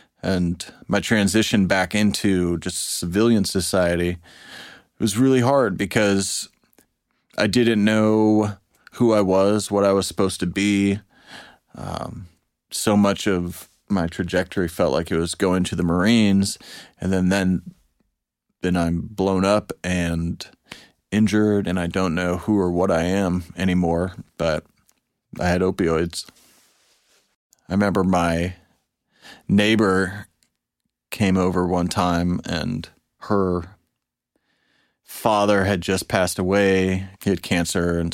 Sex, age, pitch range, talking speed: male, 30-49, 90-105 Hz, 125 wpm